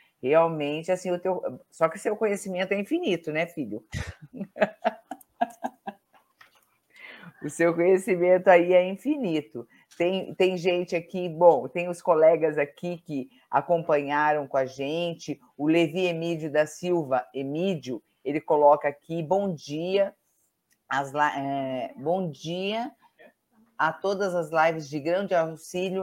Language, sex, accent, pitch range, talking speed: Portuguese, female, Brazilian, 140-175 Hz, 130 wpm